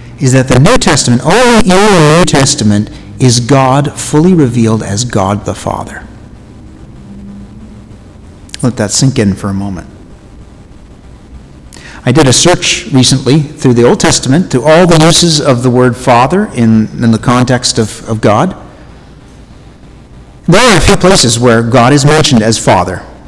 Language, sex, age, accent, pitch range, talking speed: English, male, 50-69, American, 110-135 Hz, 155 wpm